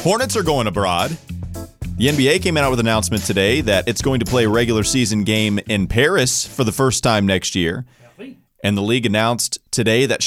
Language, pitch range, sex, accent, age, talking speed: English, 90-120 Hz, male, American, 30-49, 205 wpm